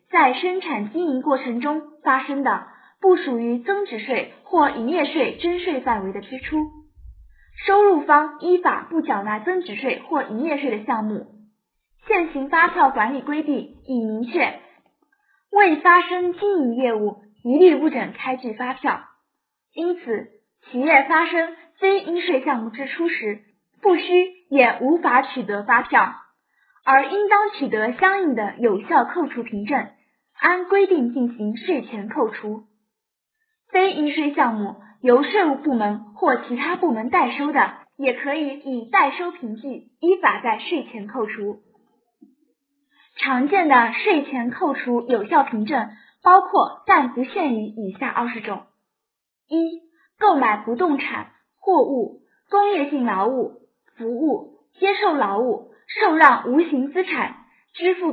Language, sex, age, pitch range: Chinese, female, 10-29, 235-345 Hz